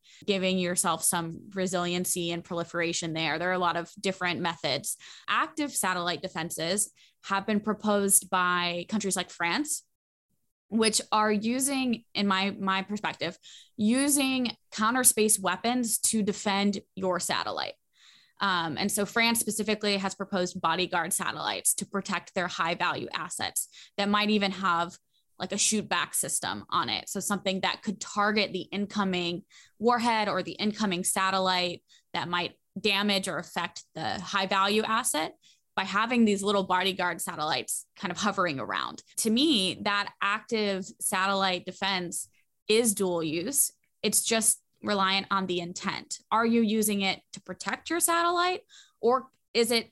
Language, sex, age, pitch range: English, female, 20-39, 180-215 Hz